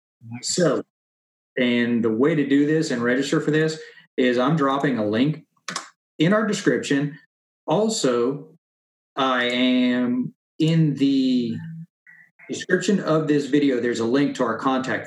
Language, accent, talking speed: English, American, 135 wpm